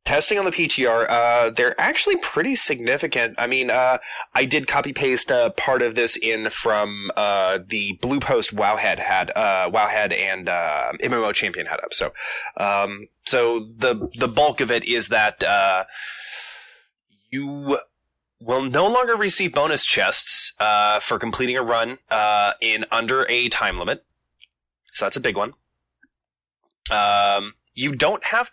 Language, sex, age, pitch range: English, male, 20-39, 105-140 Hz